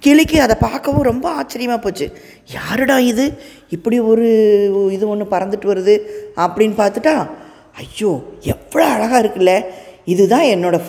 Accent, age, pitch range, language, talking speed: native, 20-39, 170-235 Hz, Tamil, 120 wpm